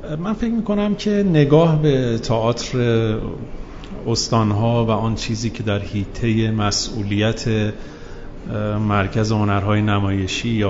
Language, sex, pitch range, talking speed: Persian, male, 105-135 Hz, 110 wpm